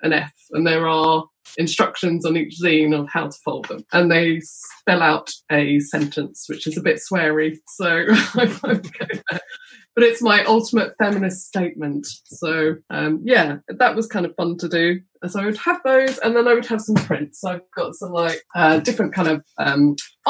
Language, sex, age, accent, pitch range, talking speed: English, female, 20-39, British, 165-225 Hz, 185 wpm